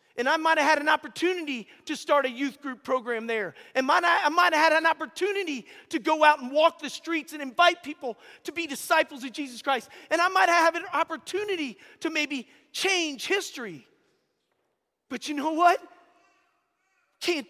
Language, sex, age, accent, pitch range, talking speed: English, male, 40-59, American, 255-320 Hz, 180 wpm